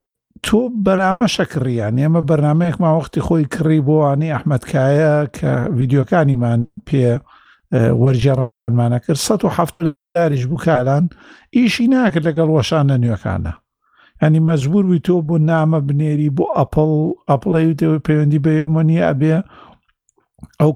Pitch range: 140-170 Hz